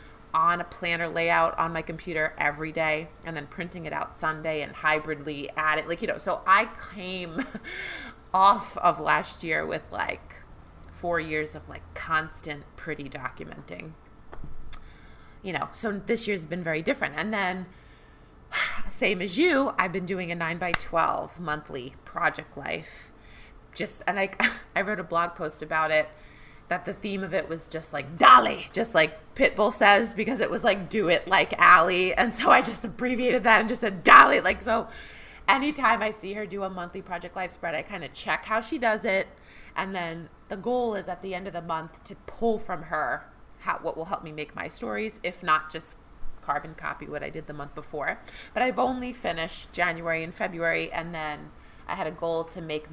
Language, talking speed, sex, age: English, 195 wpm, female, 20-39